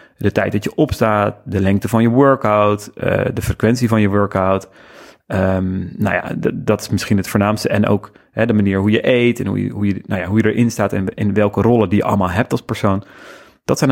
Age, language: 30-49, Dutch